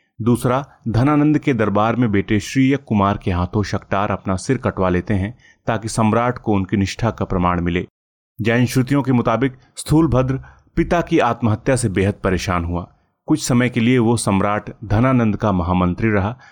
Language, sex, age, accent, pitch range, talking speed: Hindi, male, 30-49, native, 95-125 Hz, 165 wpm